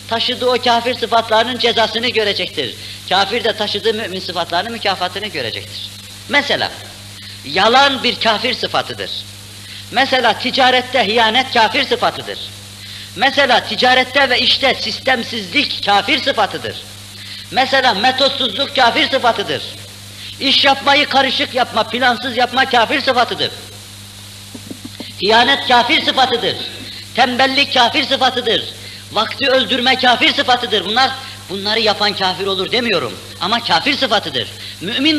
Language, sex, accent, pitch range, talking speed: Turkish, female, native, 175-255 Hz, 105 wpm